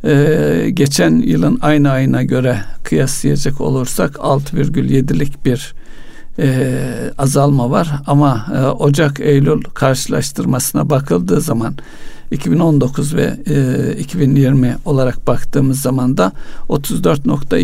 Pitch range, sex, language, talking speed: 130-150 Hz, male, Turkish, 90 wpm